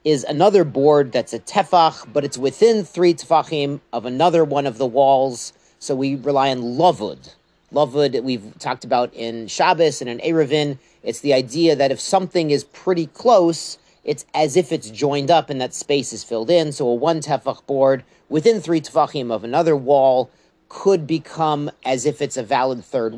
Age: 40-59